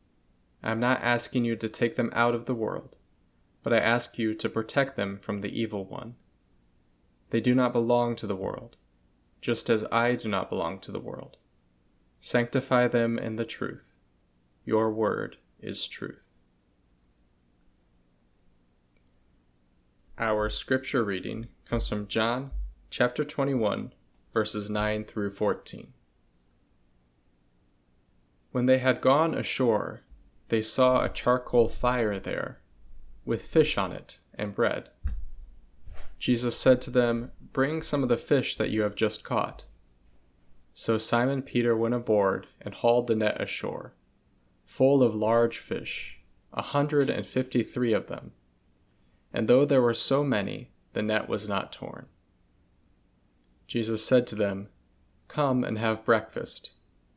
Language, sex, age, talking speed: English, male, 20-39, 135 wpm